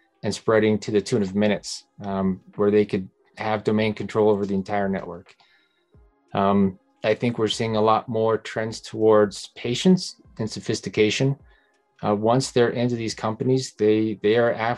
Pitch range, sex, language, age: 100-115 Hz, male, English, 30-49